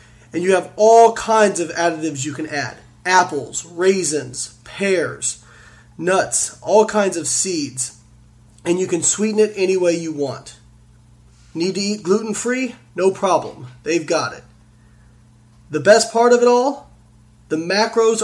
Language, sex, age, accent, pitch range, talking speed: English, male, 30-49, American, 140-195 Hz, 145 wpm